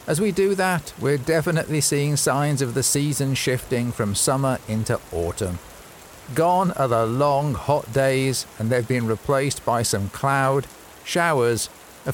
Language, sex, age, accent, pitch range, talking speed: English, male, 50-69, British, 120-150 Hz, 155 wpm